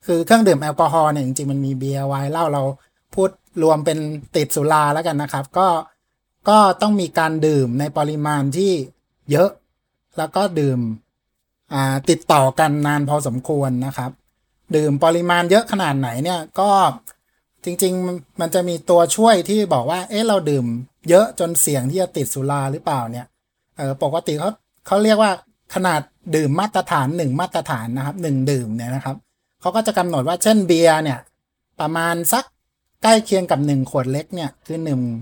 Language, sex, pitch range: Thai, male, 140-180 Hz